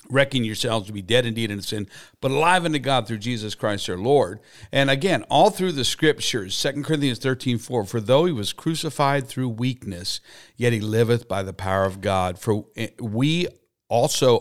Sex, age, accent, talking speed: male, 50-69, American, 185 wpm